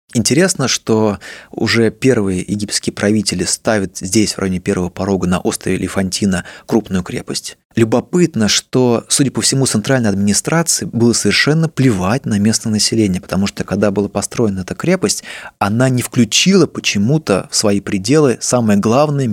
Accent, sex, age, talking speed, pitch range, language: native, male, 20-39, 145 wpm, 100-130 Hz, Russian